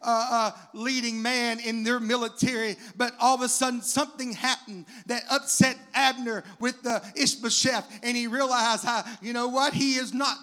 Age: 40-59